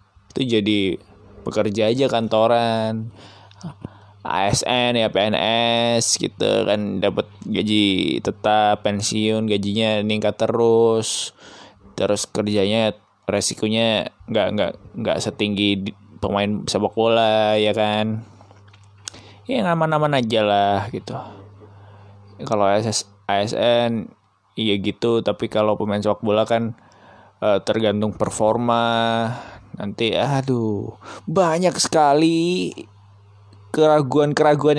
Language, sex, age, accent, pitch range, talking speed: Indonesian, male, 20-39, native, 105-140 Hz, 90 wpm